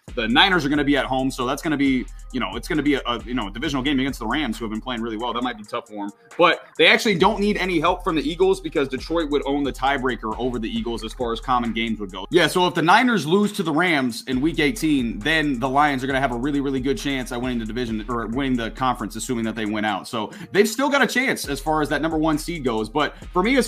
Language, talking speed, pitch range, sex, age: English, 310 wpm, 130-210 Hz, male, 30-49